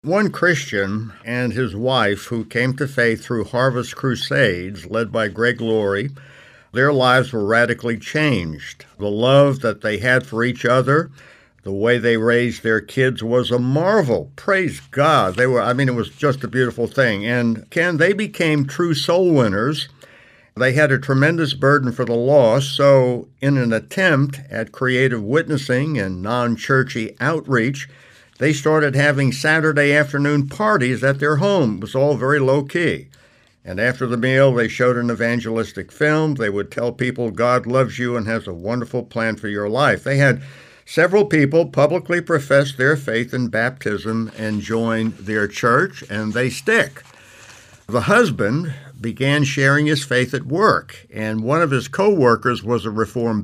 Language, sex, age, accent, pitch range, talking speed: English, male, 60-79, American, 115-140 Hz, 165 wpm